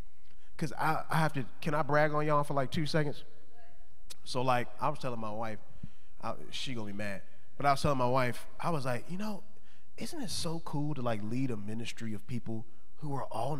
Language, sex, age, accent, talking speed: English, male, 20-39, American, 220 wpm